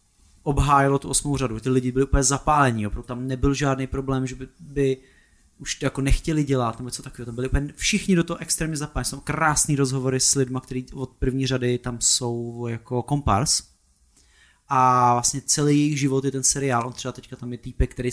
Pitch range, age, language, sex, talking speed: 125-140 Hz, 20-39, Czech, male, 200 wpm